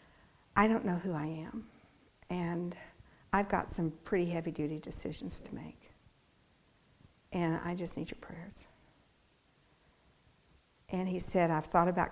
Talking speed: 140 wpm